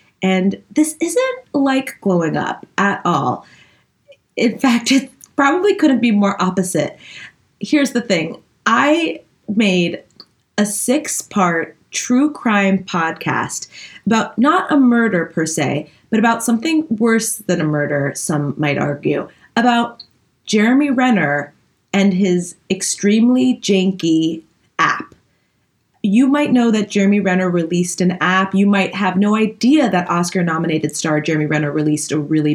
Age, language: 30-49, English